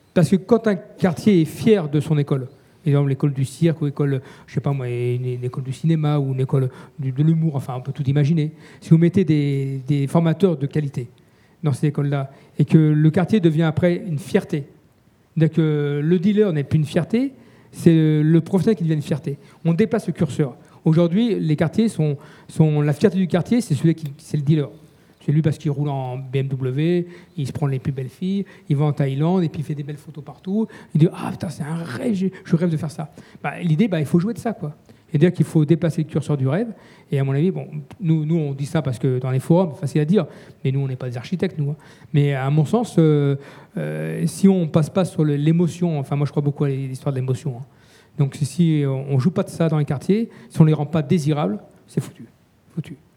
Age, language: 40-59, French